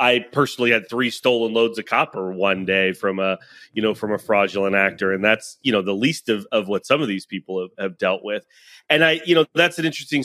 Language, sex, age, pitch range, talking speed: English, male, 30-49, 105-150 Hz, 245 wpm